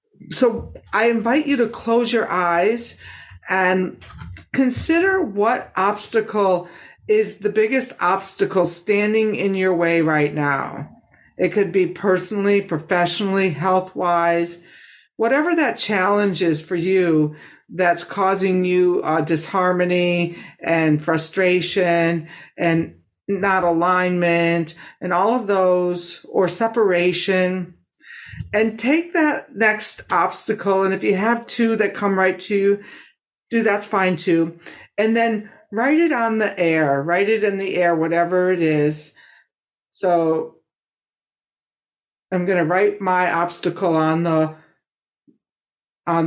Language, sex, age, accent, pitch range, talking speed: English, female, 50-69, American, 170-215 Hz, 125 wpm